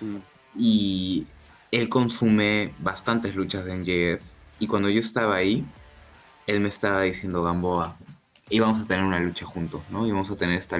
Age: 20-39